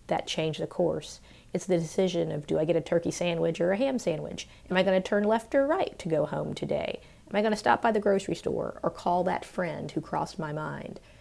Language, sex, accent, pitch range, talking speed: English, female, American, 150-180 Hz, 240 wpm